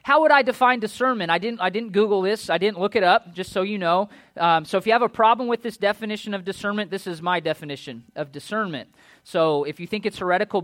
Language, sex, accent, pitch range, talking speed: English, male, American, 165-225 Hz, 250 wpm